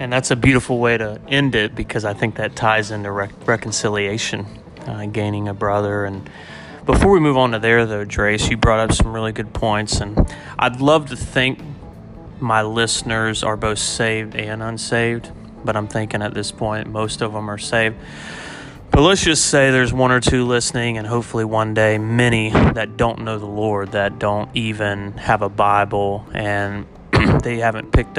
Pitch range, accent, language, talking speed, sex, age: 105-115 Hz, American, English, 185 wpm, male, 30-49